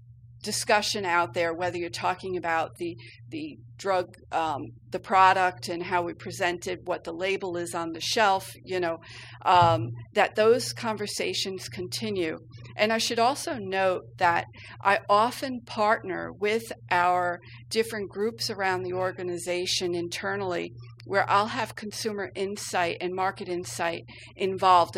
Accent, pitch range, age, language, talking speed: American, 130-200 Hz, 40-59, English, 135 wpm